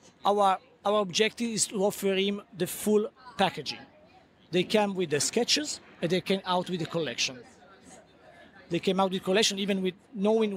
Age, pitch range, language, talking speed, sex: 40-59, 165-200 Hz, English, 170 wpm, male